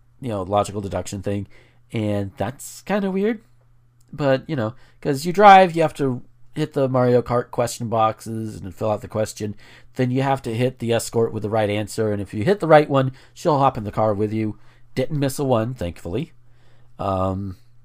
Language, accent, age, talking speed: English, American, 40-59, 205 wpm